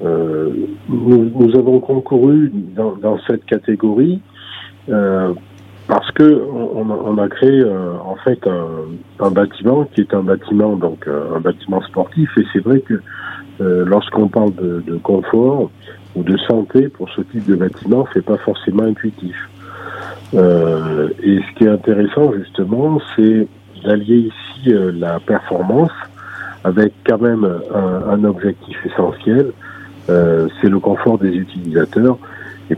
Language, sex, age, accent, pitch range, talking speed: French, male, 50-69, French, 90-110 Hz, 145 wpm